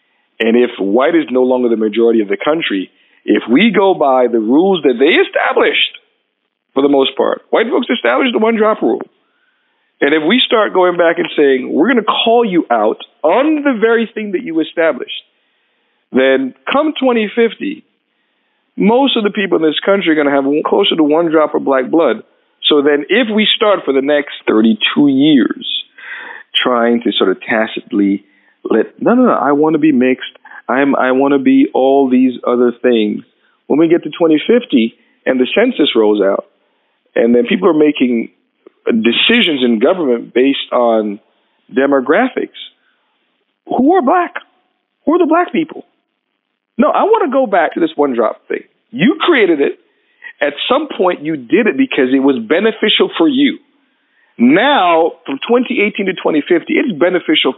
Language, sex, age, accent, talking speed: English, male, 50-69, American, 175 wpm